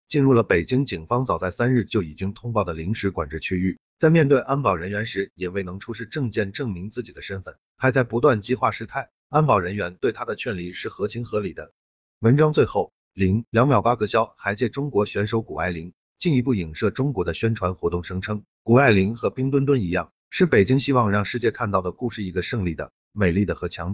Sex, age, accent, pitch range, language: male, 50-69, native, 95-130 Hz, Chinese